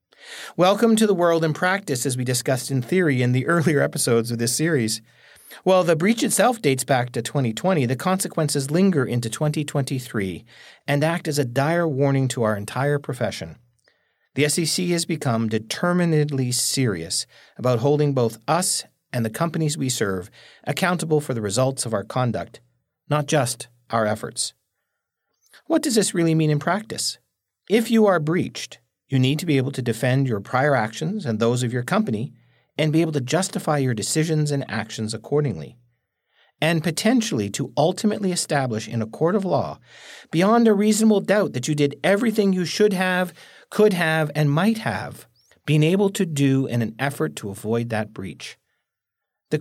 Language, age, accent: English, 40-59, American